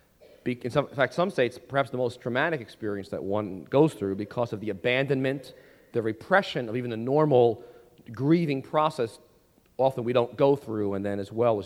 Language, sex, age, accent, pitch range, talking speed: English, male, 40-59, American, 110-155 Hz, 190 wpm